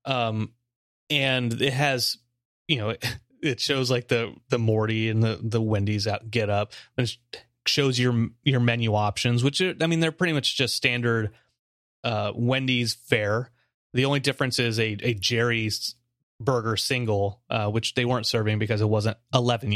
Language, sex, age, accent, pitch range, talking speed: English, male, 30-49, American, 110-130 Hz, 170 wpm